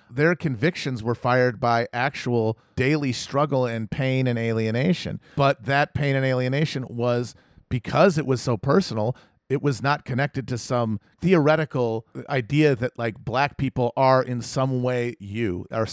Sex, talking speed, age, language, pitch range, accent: male, 155 wpm, 40-59, English, 120-145 Hz, American